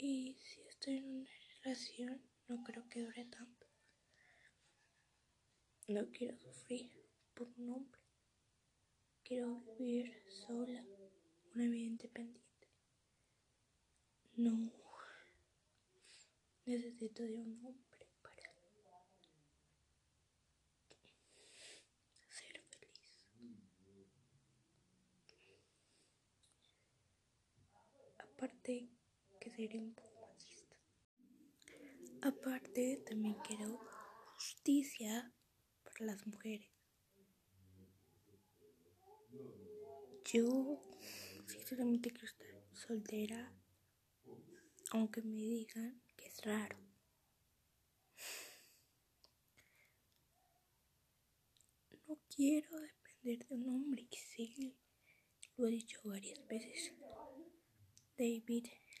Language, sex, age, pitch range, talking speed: Spanish, female, 20-39, 215-255 Hz, 70 wpm